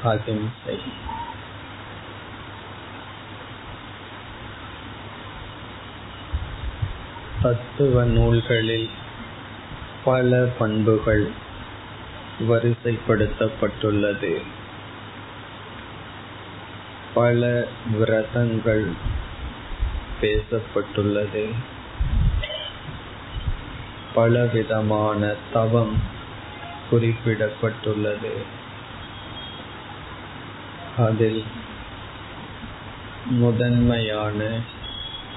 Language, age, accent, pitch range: Tamil, 20-39, native, 105-115 Hz